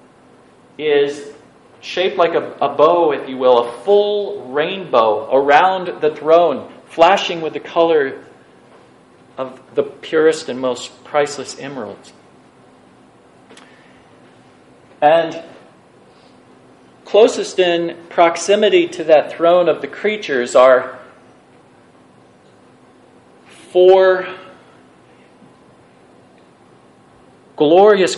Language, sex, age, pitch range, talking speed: English, male, 40-59, 140-185 Hz, 85 wpm